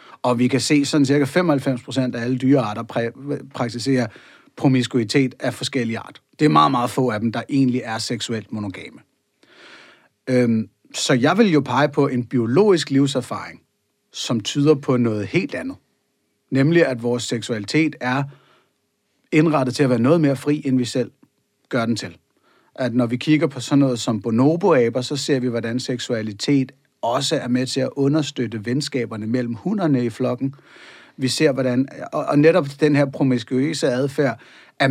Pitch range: 120-140 Hz